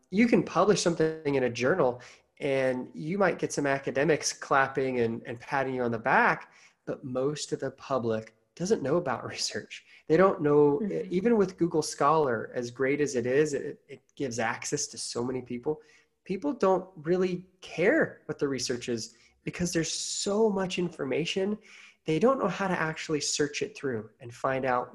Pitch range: 125-160 Hz